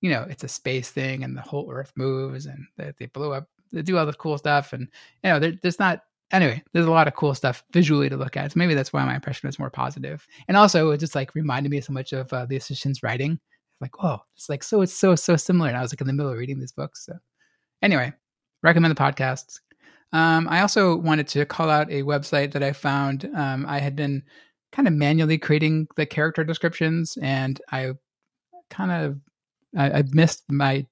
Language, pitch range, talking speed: English, 135-160 Hz, 225 wpm